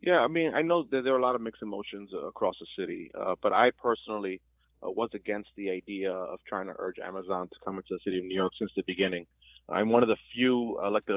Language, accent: English, American